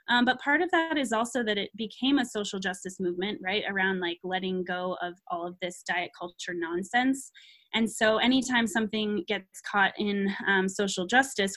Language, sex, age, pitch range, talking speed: English, female, 20-39, 195-235 Hz, 185 wpm